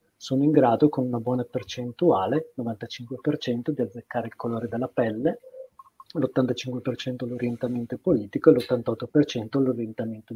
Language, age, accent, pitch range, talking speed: Italian, 40-59, native, 120-150 Hz, 115 wpm